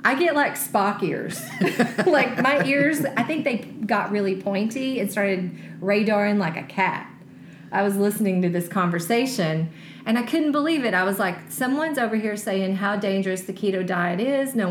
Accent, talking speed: American, 185 wpm